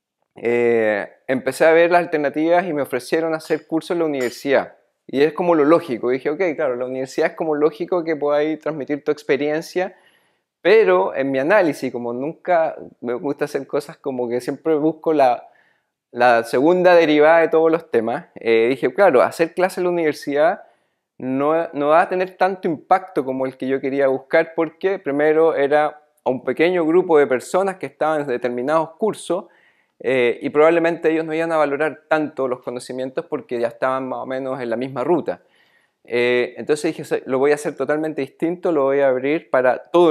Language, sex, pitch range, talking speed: Spanish, male, 130-165 Hz, 185 wpm